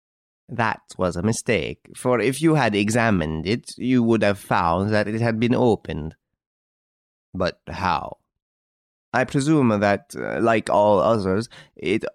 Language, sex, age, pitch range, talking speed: English, male, 30-49, 90-125 Hz, 140 wpm